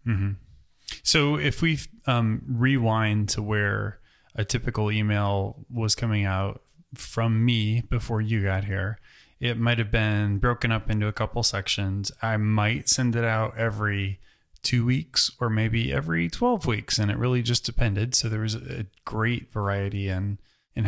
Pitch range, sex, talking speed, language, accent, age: 100-120 Hz, male, 160 wpm, English, American, 20-39